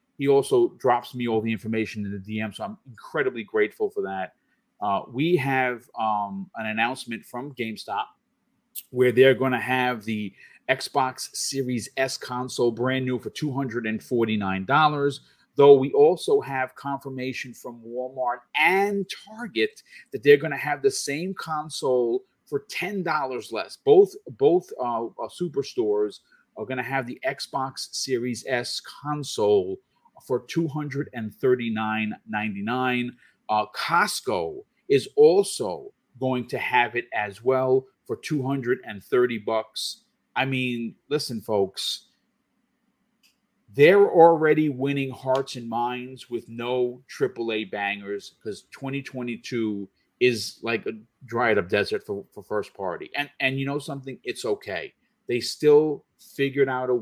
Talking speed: 130 wpm